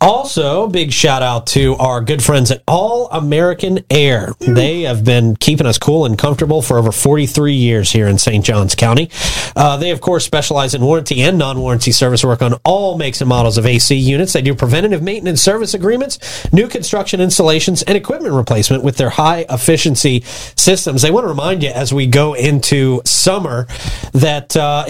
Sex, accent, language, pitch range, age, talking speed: male, American, English, 125-185 Hz, 40-59, 185 wpm